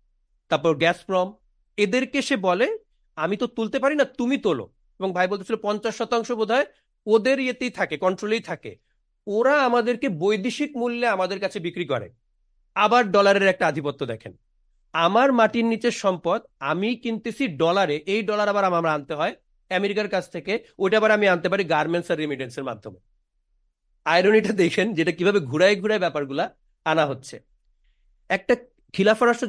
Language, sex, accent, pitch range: Bengali, male, native, 170-225 Hz